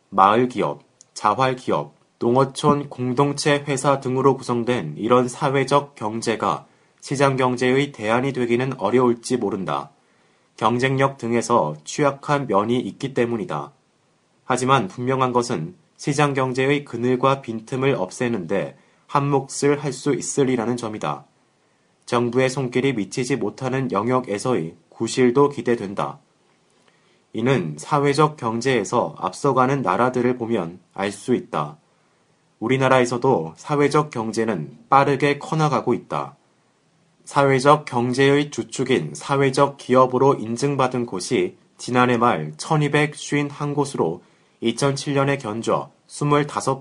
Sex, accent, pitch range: male, native, 115-140 Hz